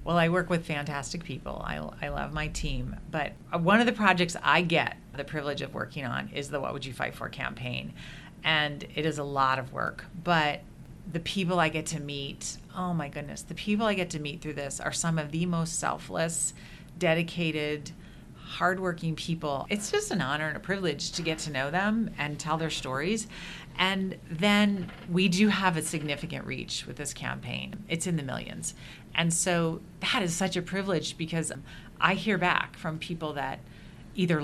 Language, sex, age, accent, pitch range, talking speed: English, female, 40-59, American, 155-185 Hz, 195 wpm